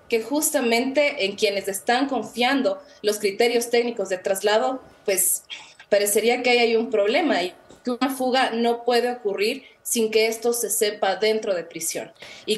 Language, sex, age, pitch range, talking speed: English, female, 20-39, 195-235 Hz, 160 wpm